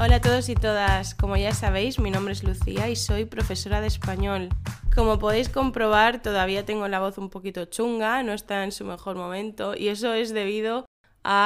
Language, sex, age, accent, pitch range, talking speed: Spanish, female, 20-39, Spanish, 175-235 Hz, 200 wpm